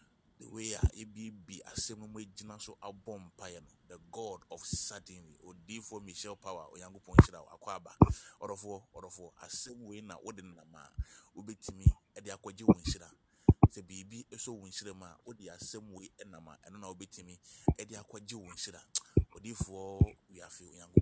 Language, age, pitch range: English, 30-49, 90-105 Hz